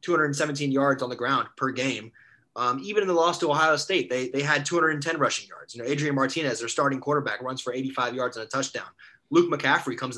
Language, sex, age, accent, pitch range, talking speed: English, male, 20-39, American, 130-160 Hz, 225 wpm